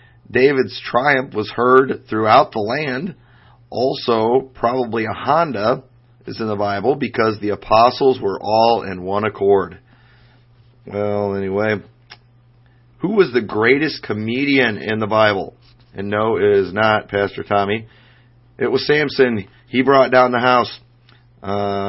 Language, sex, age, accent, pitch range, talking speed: English, male, 40-59, American, 105-125 Hz, 135 wpm